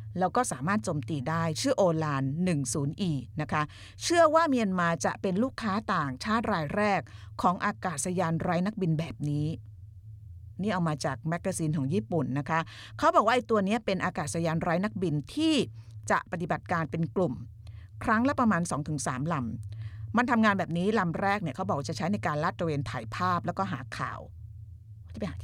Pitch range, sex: 125-195 Hz, female